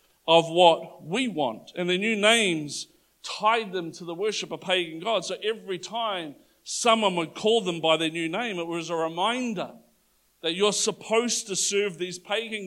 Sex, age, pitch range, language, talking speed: male, 50-69, 165-205 Hz, English, 180 wpm